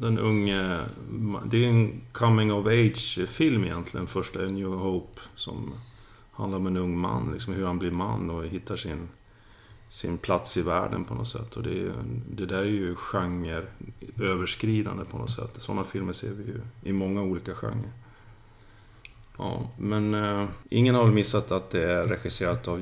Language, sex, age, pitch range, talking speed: Swedish, male, 30-49, 95-115 Hz, 160 wpm